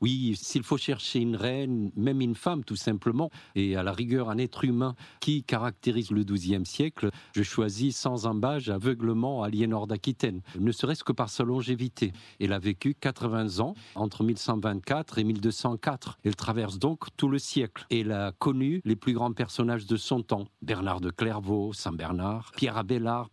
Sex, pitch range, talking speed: male, 105-125 Hz, 170 wpm